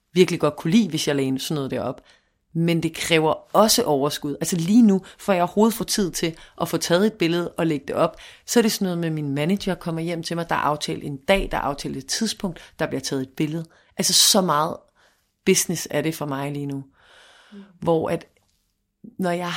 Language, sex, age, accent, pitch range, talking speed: Danish, female, 30-49, native, 145-185 Hz, 225 wpm